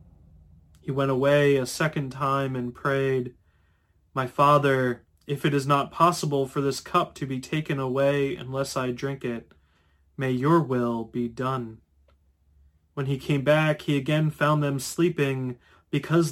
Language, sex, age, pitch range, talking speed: English, male, 20-39, 125-155 Hz, 150 wpm